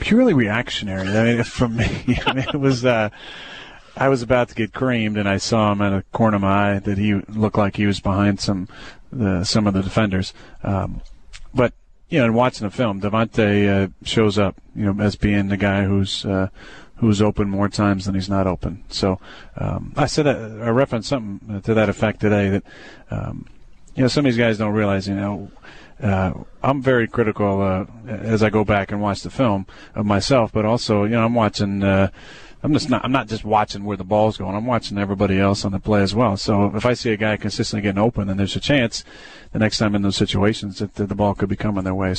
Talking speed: 230 wpm